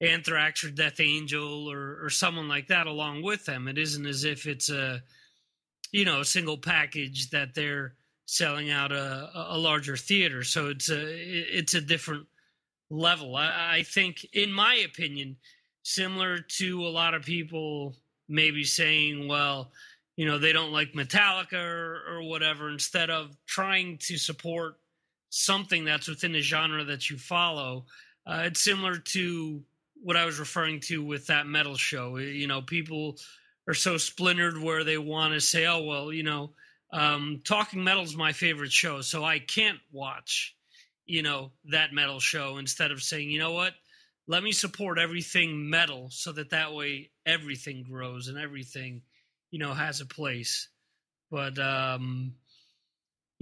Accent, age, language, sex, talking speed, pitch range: American, 30-49, English, male, 165 wpm, 145-170 Hz